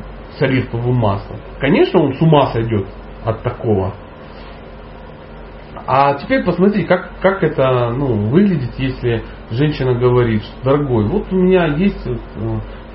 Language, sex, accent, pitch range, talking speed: Russian, male, native, 110-150 Hz, 120 wpm